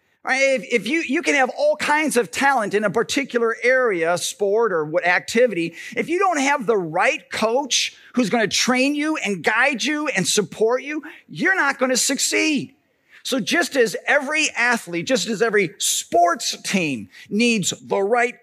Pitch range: 205-275 Hz